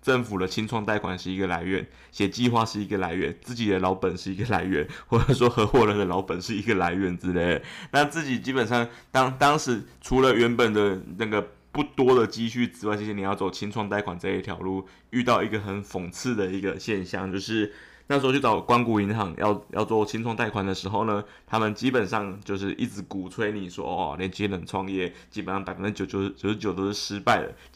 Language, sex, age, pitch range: Chinese, male, 20-39, 95-115 Hz